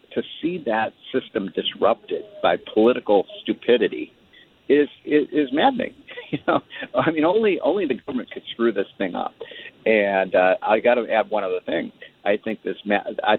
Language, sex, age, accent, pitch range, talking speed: English, male, 50-69, American, 100-150 Hz, 175 wpm